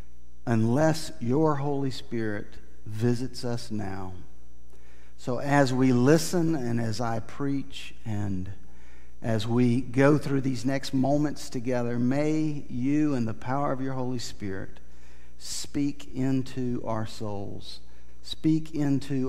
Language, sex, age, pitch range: English, male, 50-69, 105-135 Hz